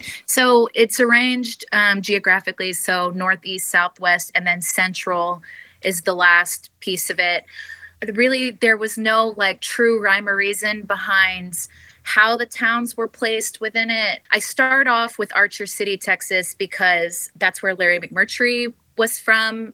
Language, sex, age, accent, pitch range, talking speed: English, female, 20-39, American, 180-220 Hz, 145 wpm